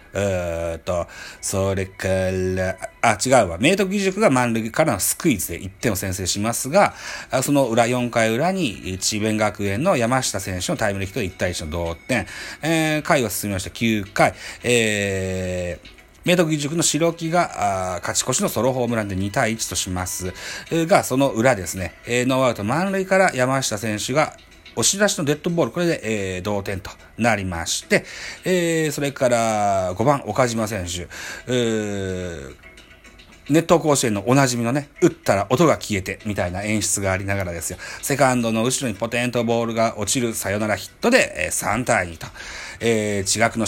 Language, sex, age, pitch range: Japanese, male, 40-59, 95-130 Hz